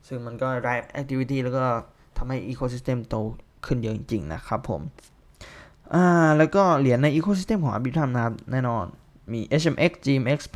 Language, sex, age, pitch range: Thai, male, 20-39, 115-135 Hz